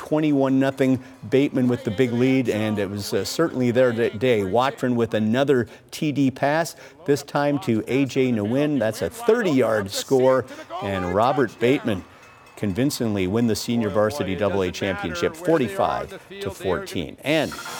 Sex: male